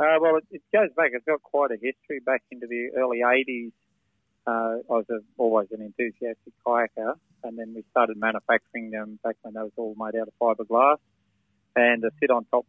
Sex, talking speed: male, 185 wpm